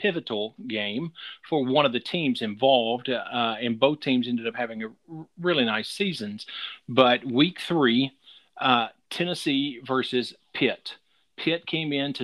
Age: 40-59